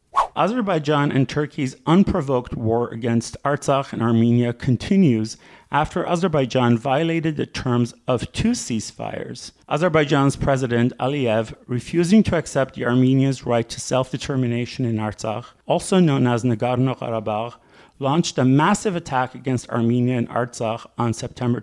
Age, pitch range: 40-59, 120-155 Hz